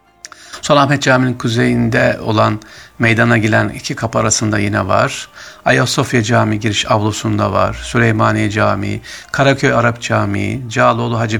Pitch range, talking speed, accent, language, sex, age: 115-160 Hz, 120 wpm, native, Turkish, male, 50-69